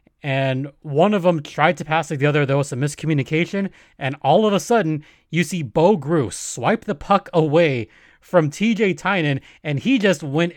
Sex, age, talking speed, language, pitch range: male, 20-39, 195 wpm, English, 140-190 Hz